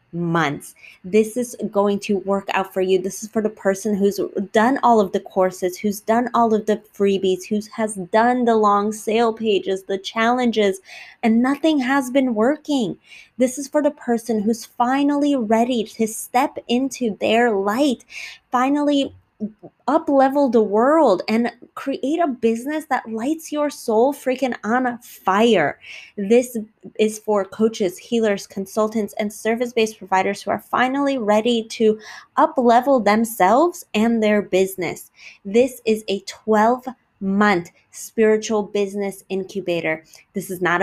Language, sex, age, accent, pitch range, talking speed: English, female, 20-39, American, 200-245 Hz, 150 wpm